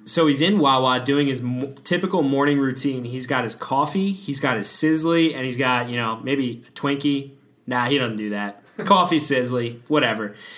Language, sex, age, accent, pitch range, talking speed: English, male, 20-39, American, 125-190 Hz, 185 wpm